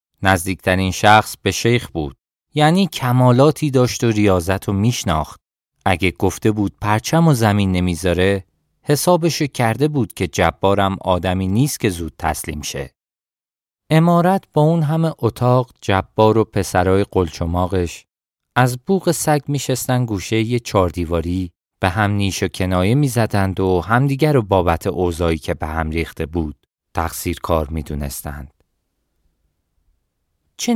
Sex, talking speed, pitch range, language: male, 135 wpm, 85-125 Hz, Persian